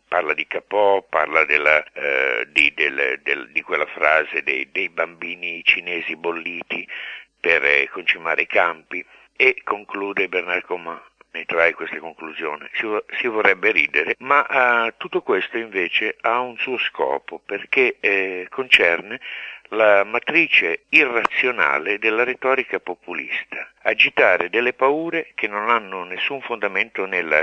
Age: 60-79